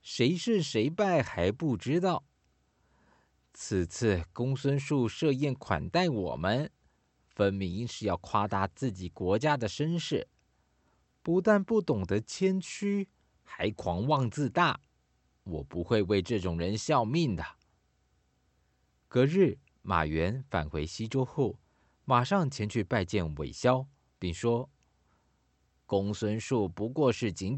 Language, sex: Chinese, male